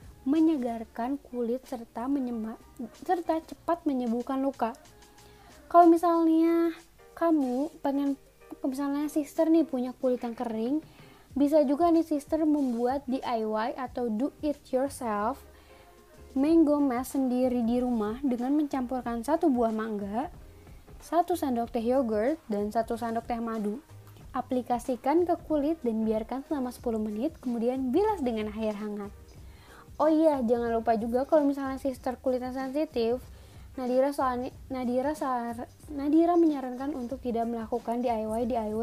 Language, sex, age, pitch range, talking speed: Indonesian, female, 20-39, 235-285 Hz, 125 wpm